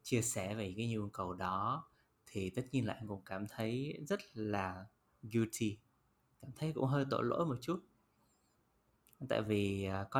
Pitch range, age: 100-125 Hz, 20-39